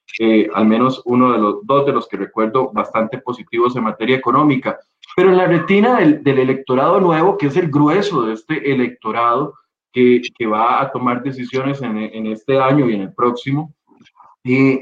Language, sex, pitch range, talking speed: Spanish, male, 120-145 Hz, 185 wpm